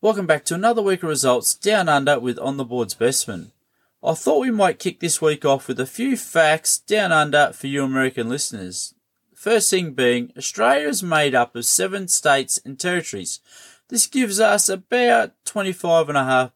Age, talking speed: 20-39, 180 wpm